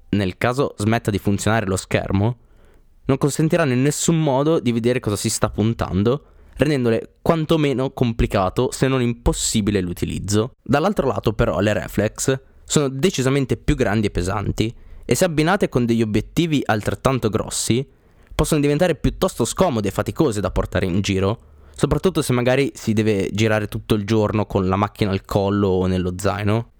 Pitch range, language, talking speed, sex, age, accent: 100-135 Hz, Italian, 160 wpm, male, 20-39, native